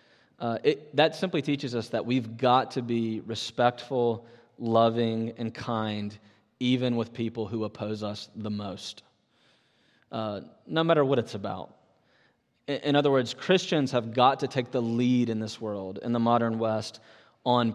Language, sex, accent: English, male, American